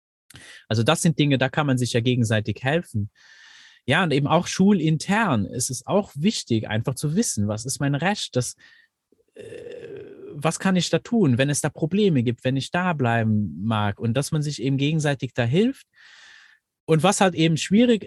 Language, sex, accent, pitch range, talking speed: German, male, German, 120-170 Hz, 185 wpm